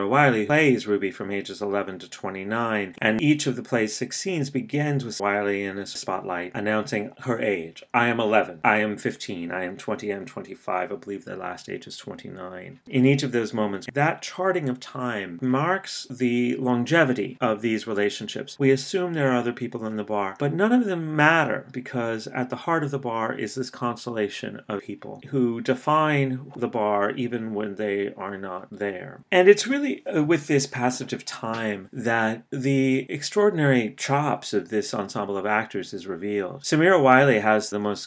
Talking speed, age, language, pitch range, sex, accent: 185 wpm, 30-49, English, 100-135 Hz, male, American